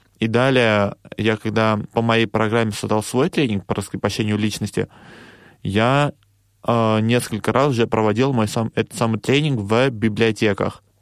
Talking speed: 140 wpm